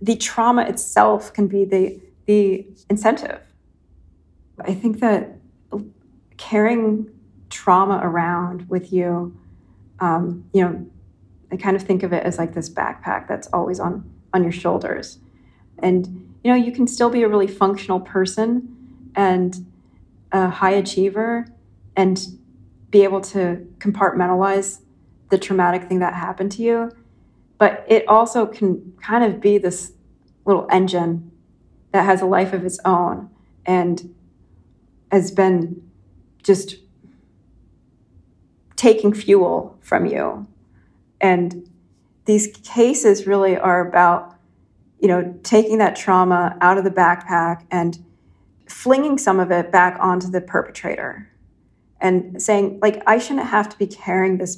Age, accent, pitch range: 40-59, American, 170-200 Hz